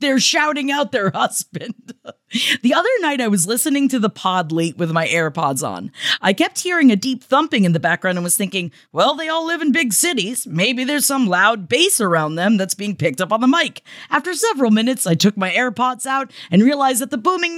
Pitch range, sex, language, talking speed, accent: 185-270 Hz, female, English, 220 wpm, American